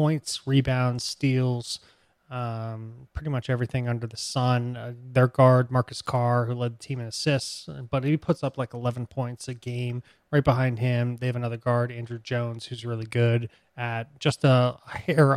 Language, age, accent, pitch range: English, 20-39, American, 115-130 Hz